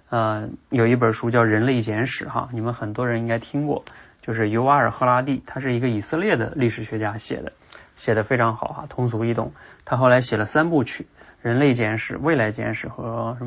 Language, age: Chinese, 20-39